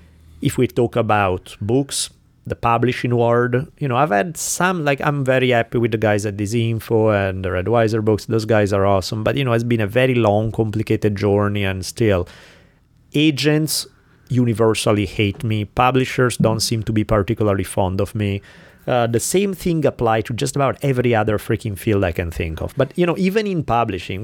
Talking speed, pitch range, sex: 195 wpm, 100-135 Hz, male